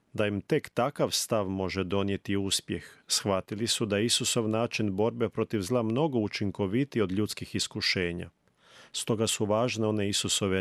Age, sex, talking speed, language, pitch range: 40-59, male, 145 wpm, Croatian, 95-115 Hz